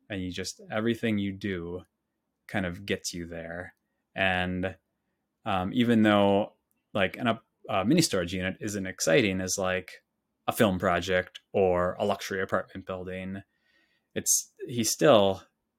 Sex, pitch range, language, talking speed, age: male, 95-110 Hz, English, 135 wpm, 20-39